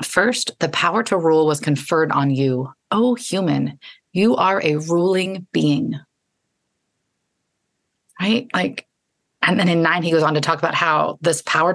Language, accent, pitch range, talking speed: English, American, 140-165 Hz, 160 wpm